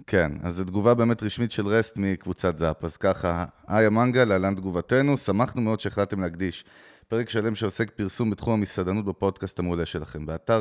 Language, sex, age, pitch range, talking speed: Hebrew, male, 30-49, 90-110 Hz, 170 wpm